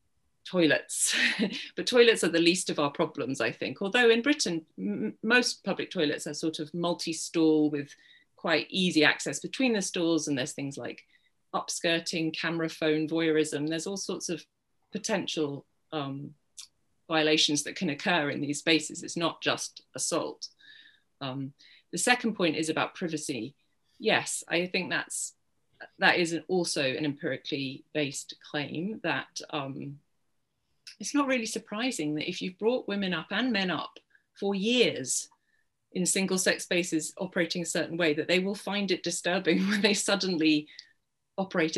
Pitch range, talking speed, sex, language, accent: 150-195 Hz, 155 wpm, female, English, British